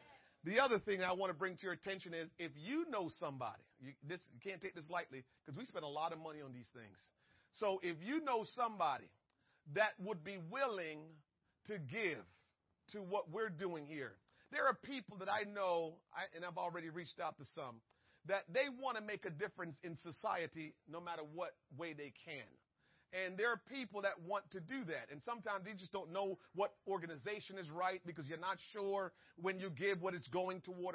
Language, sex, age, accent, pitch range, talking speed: English, male, 40-59, American, 170-205 Hz, 205 wpm